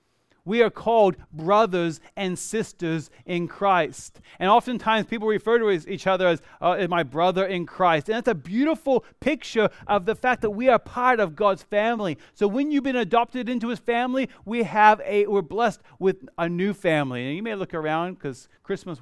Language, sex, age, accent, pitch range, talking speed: English, male, 30-49, American, 160-225 Hz, 190 wpm